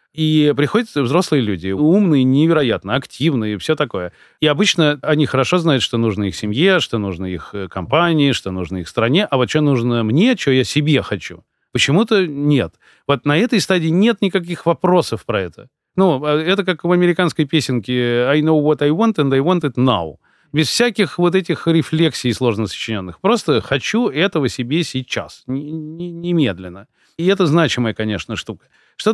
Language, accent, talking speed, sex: Russian, native, 165 wpm, male